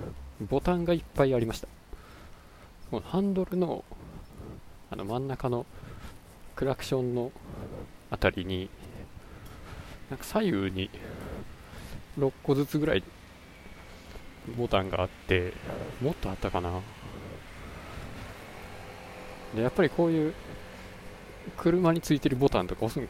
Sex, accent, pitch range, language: male, native, 90-125 Hz, Japanese